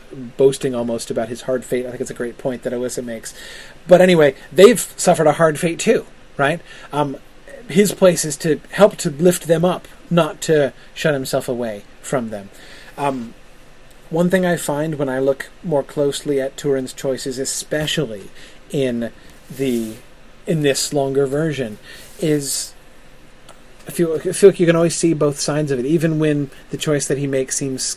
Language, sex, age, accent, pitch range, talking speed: English, male, 30-49, American, 125-155 Hz, 180 wpm